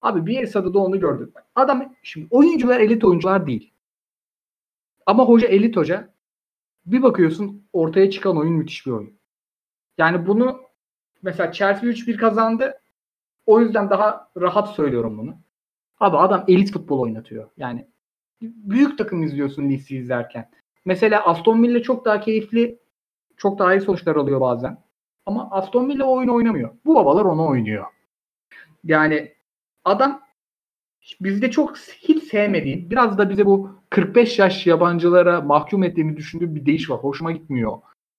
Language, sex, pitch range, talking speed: Turkish, male, 155-235 Hz, 140 wpm